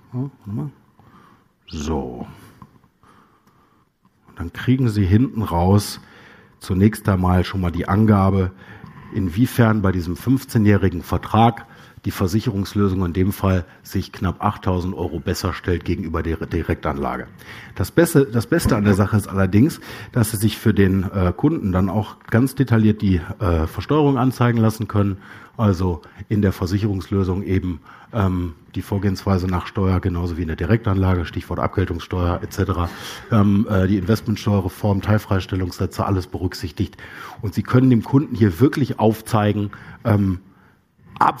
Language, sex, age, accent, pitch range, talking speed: German, male, 50-69, German, 95-115 Hz, 130 wpm